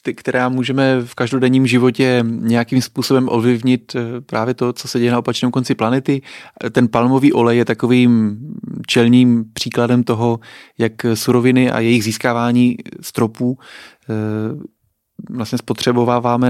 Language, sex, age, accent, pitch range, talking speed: Czech, male, 30-49, native, 110-125 Hz, 125 wpm